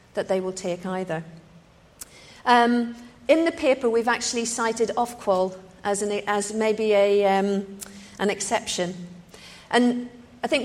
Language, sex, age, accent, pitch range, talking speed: English, female, 50-69, British, 190-235 Hz, 125 wpm